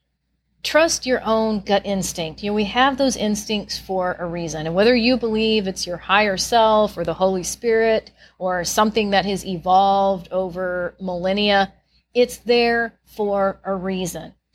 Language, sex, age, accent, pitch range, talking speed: English, female, 40-59, American, 185-240 Hz, 155 wpm